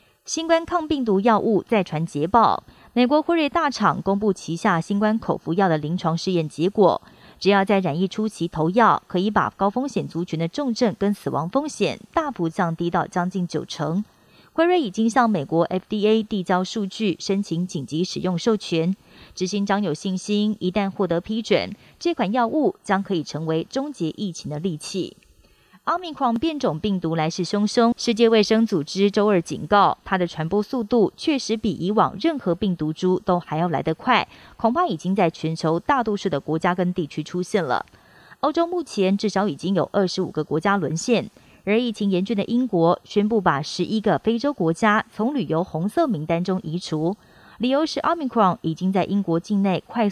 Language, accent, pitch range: Chinese, native, 170-220 Hz